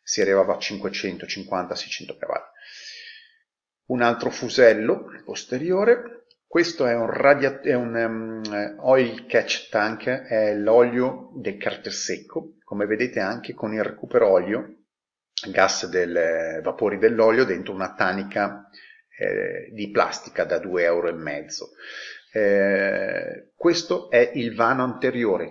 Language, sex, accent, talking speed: Italian, male, native, 120 wpm